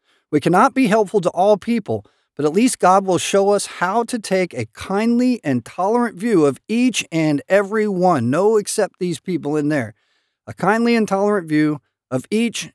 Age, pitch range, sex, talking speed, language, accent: 50-69, 150-215 Hz, male, 190 wpm, English, American